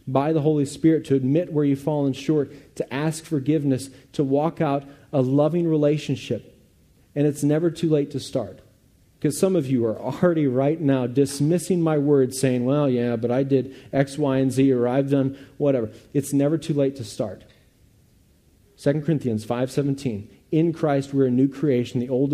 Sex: male